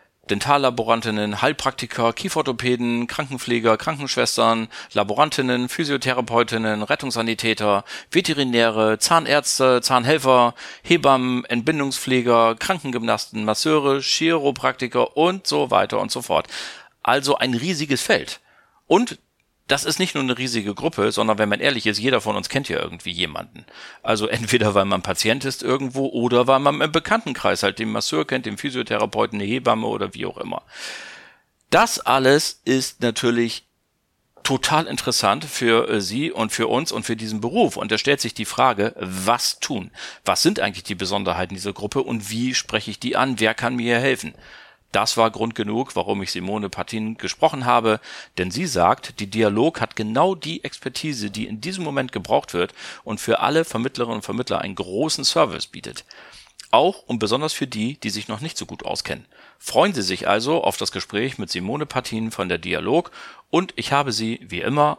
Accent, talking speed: German, 165 wpm